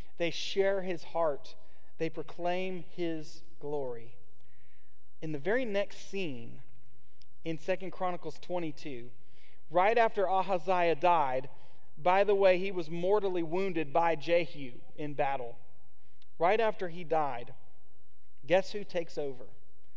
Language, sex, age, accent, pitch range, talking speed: English, male, 40-59, American, 150-210 Hz, 120 wpm